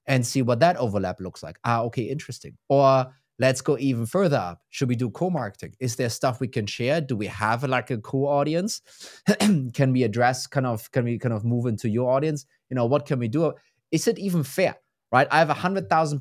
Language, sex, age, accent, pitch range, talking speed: English, male, 30-49, German, 115-150 Hz, 220 wpm